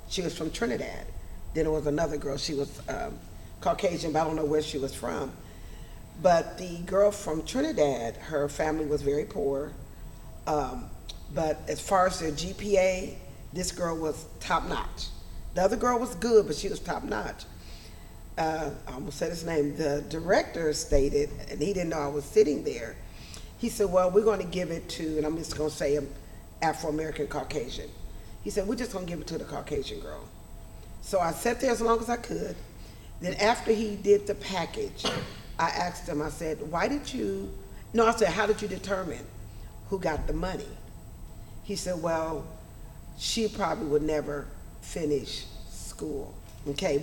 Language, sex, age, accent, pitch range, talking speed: English, female, 40-59, American, 140-200 Hz, 180 wpm